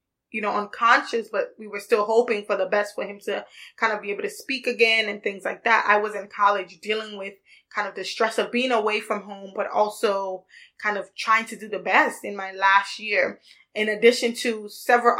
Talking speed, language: 225 wpm, English